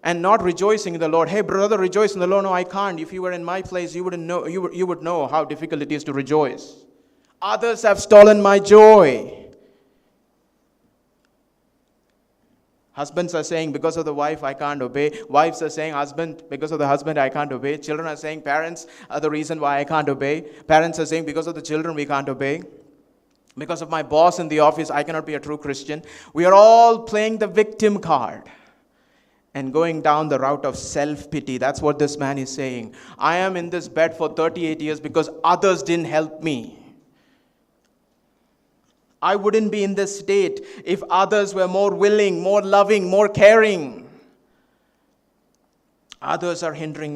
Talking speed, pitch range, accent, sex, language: 185 wpm, 150-190 Hz, native, male, Malayalam